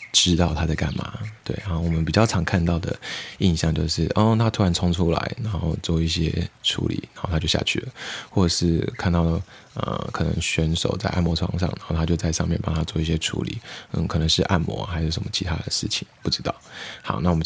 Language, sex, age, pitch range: Chinese, male, 20-39, 80-100 Hz